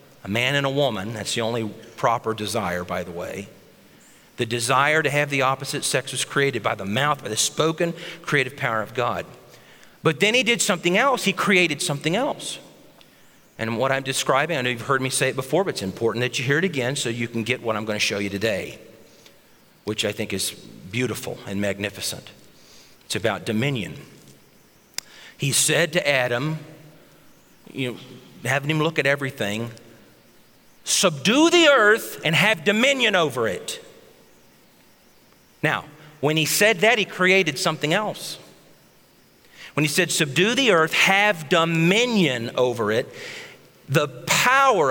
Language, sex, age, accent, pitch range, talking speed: English, male, 40-59, American, 120-185 Hz, 165 wpm